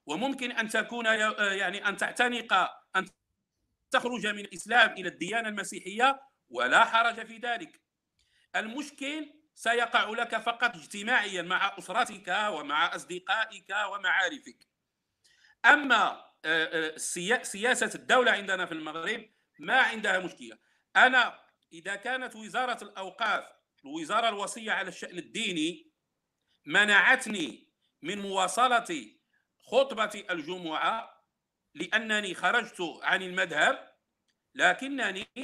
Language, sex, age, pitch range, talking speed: Arabic, male, 50-69, 195-260 Hz, 95 wpm